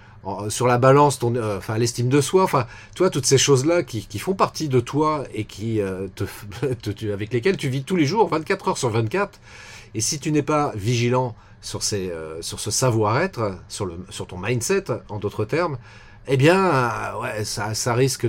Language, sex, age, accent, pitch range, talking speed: French, male, 40-59, French, 110-140 Hz, 205 wpm